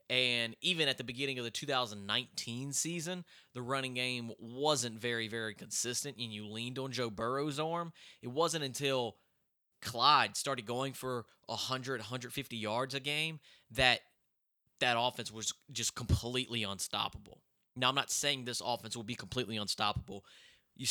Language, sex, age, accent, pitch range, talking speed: English, male, 20-39, American, 115-145 Hz, 150 wpm